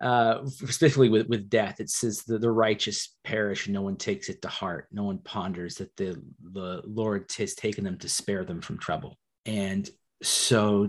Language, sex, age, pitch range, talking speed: English, male, 30-49, 100-115 Hz, 195 wpm